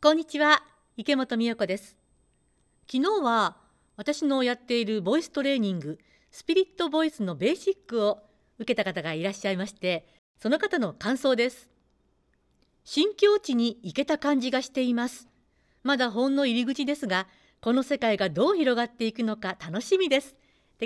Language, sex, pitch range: Japanese, female, 205-285 Hz